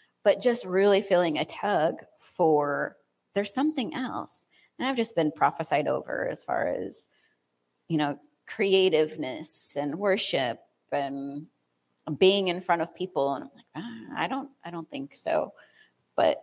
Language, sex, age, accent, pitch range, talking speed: English, female, 30-49, American, 150-215 Hz, 150 wpm